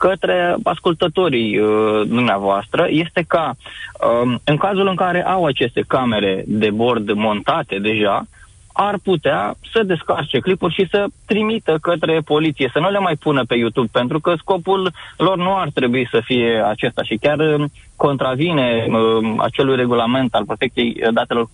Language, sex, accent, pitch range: Romanian, male, native, 120-155 Hz